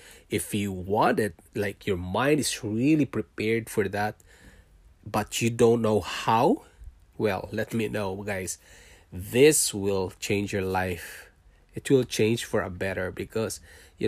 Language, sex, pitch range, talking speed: English, male, 95-115 Hz, 150 wpm